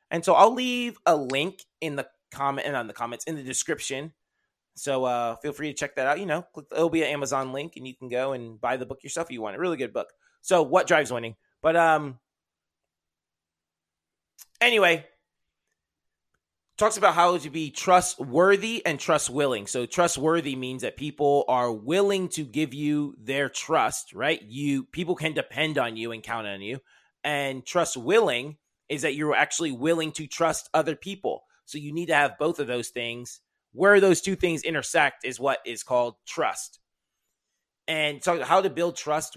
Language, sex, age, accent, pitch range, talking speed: English, male, 30-49, American, 130-165 Hz, 190 wpm